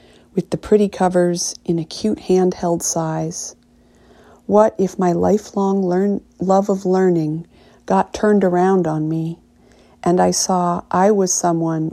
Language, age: English, 50-69